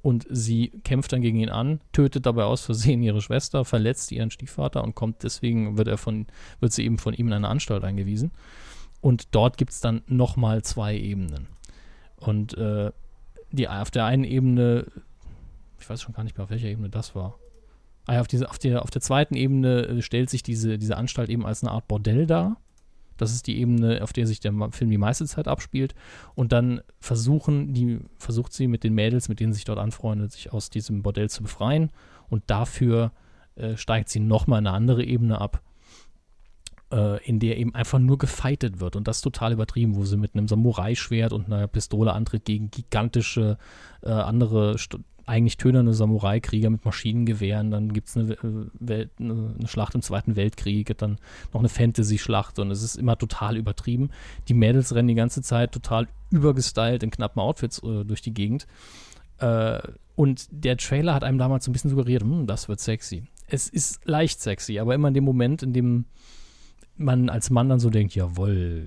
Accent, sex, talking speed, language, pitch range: German, male, 195 wpm, German, 105-125 Hz